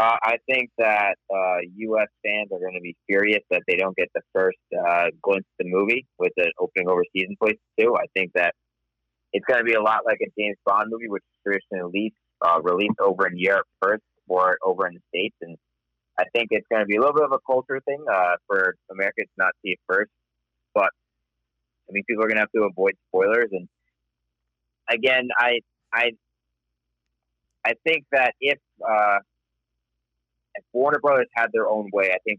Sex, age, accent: male, 30-49, American